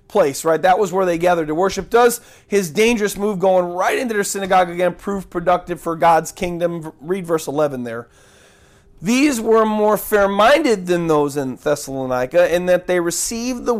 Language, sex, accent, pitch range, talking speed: English, male, American, 170-225 Hz, 185 wpm